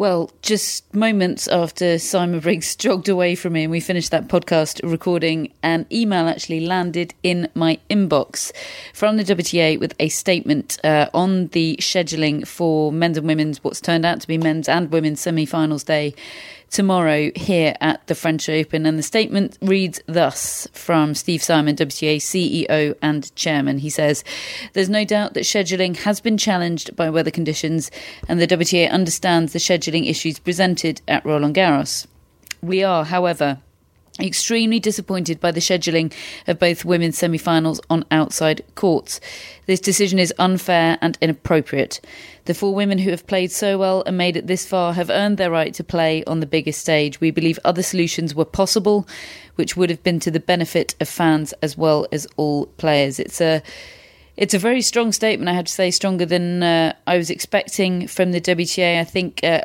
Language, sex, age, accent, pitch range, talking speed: English, female, 40-59, British, 160-185 Hz, 175 wpm